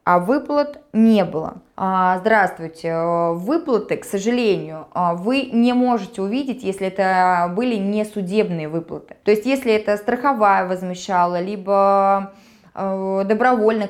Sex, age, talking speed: female, 20-39, 110 wpm